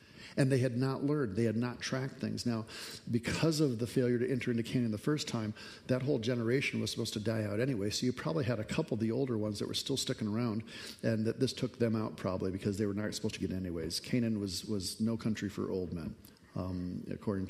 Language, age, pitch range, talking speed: English, 50-69, 110-145 Hz, 245 wpm